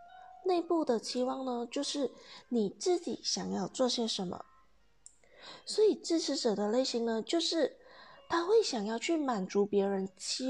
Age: 20-39